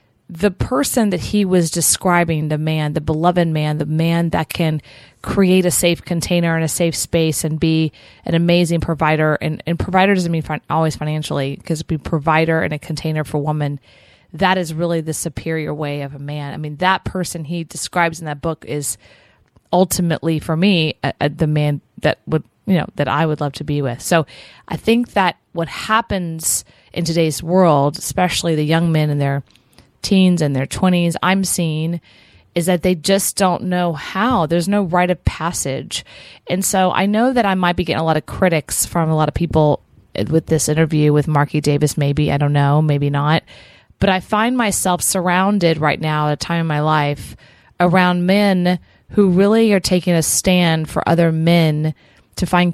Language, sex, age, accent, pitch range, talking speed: English, female, 30-49, American, 150-180 Hz, 190 wpm